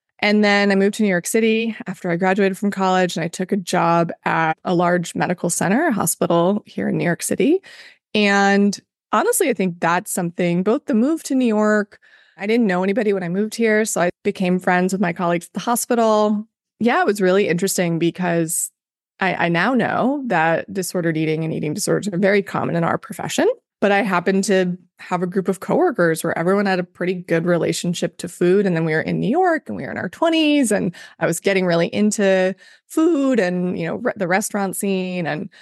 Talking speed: 215 wpm